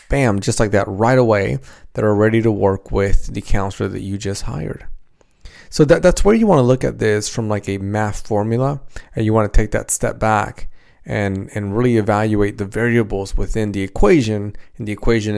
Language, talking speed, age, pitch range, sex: English, 205 wpm, 30-49, 105-125 Hz, male